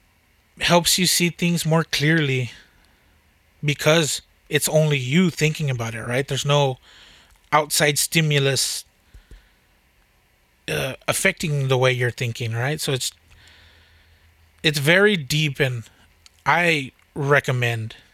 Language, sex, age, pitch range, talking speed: English, male, 20-39, 120-155 Hz, 110 wpm